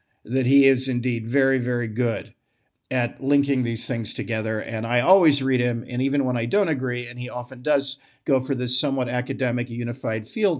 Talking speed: 195 wpm